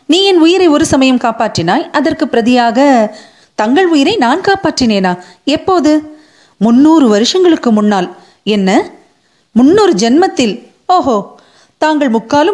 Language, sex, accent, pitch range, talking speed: Tamil, female, native, 200-285 Hz, 65 wpm